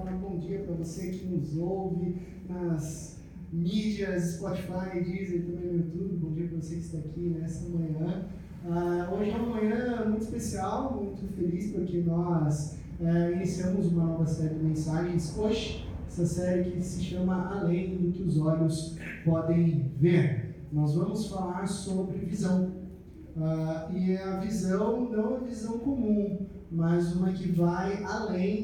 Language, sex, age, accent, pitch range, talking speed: Portuguese, male, 20-39, Brazilian, 165-190 Hz, 145 wpm